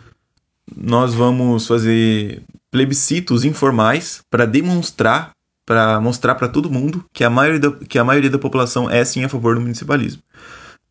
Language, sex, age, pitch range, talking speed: Portuguese, male, 20-39, 115-140 Hz, 150 wpm